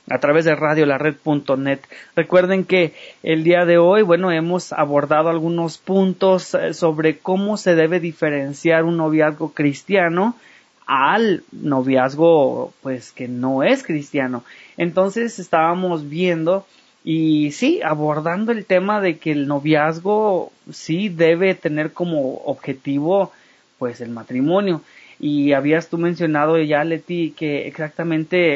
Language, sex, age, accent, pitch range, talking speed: English, male, 30-49, Mexican, 145-175 Hz, 130 wpm